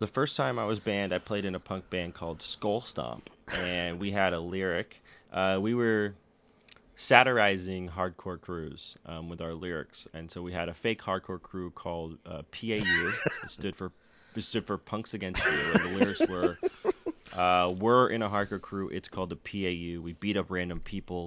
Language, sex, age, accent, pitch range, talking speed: English, male, 20-39, American, 85-105 Hz, 195 wpm